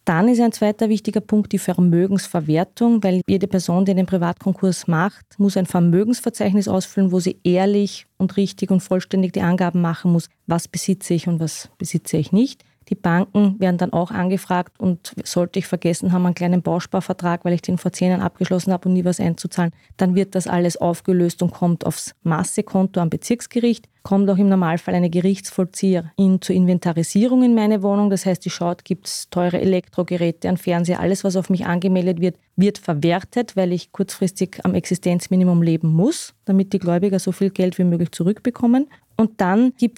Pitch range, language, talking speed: 175-205 Hz, German, 185 wpm